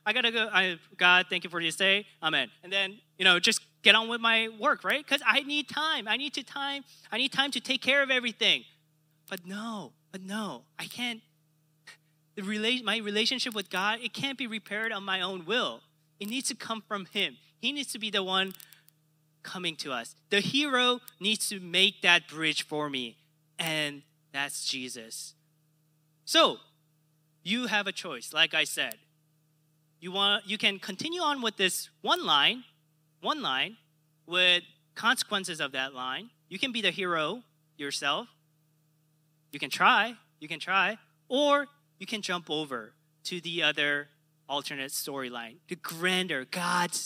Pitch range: 155-215 Hz